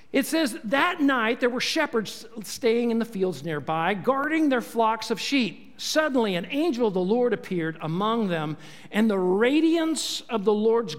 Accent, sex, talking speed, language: American, male, 175 wpm, English